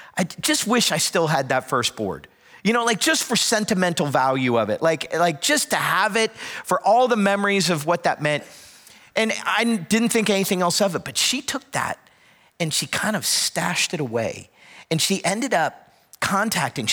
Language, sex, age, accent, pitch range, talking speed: English, male, 40-59, American, 145-195 Hz, 200 wpm